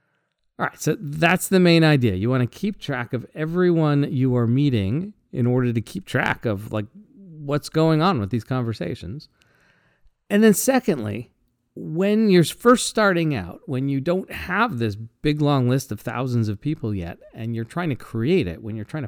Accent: American